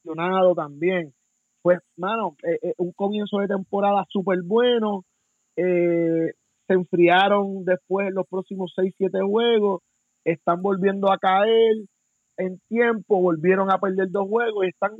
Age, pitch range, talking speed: 30-49, 165-195 Hz, 130 wpm